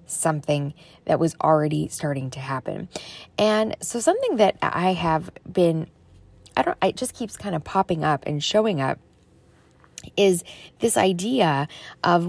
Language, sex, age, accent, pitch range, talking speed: English, female, 20-39, American, 160-200 Hz, 145 wpm